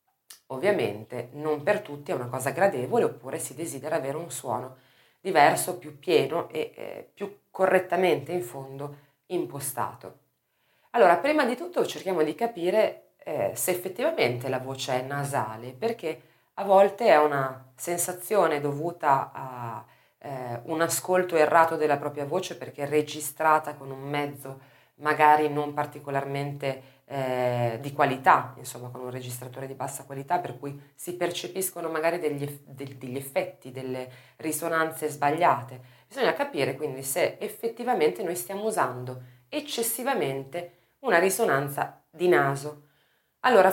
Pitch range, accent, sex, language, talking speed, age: 135-175 Hz, native, female, Italian, 135 wpm, 30-49